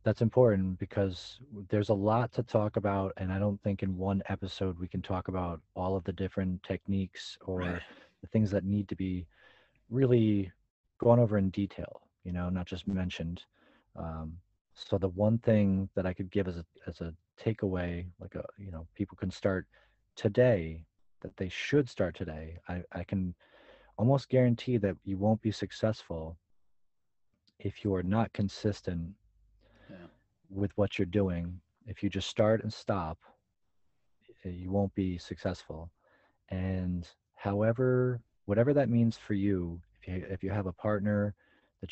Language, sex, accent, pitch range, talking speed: English, male, American, 90-105 Hz, 160 wpm